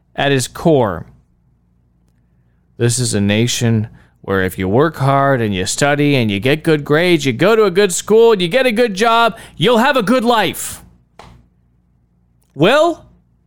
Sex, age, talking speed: male, 30-49, 170 wpm